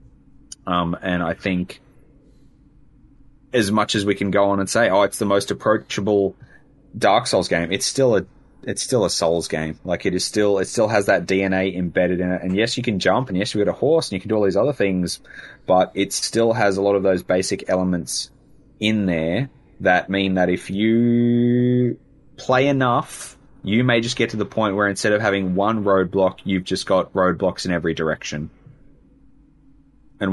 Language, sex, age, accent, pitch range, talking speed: English, male, 20-39, Australian, 90-115 Hz, 200 wpm